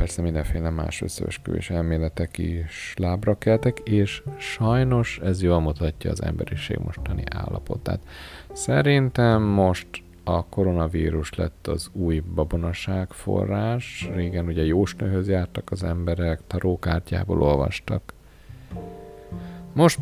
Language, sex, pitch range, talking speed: Hungarian, male, 85-105 Hz, 110 wpm